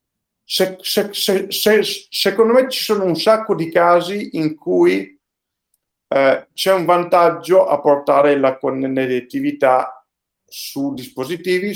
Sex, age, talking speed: male, 50-69, 130 wpm